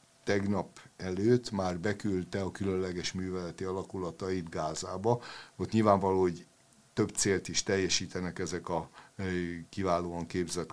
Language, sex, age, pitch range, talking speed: Hungarian, male, 60-79, 90-105 Hz, 110 wpm